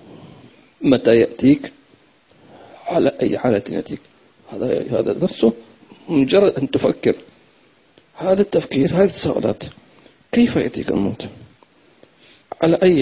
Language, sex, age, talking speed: English, male, 50-69, 95 wpm